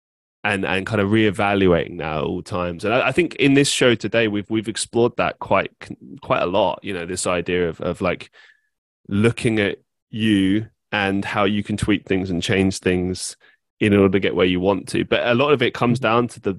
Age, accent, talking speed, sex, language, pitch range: 20-39, British, 220 wpm, male, English, 95-115 Hz